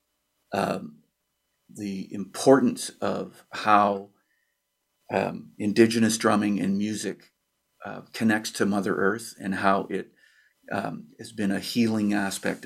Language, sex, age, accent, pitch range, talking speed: English, male, 50-69, American, 105-135 Hz, 115 wpm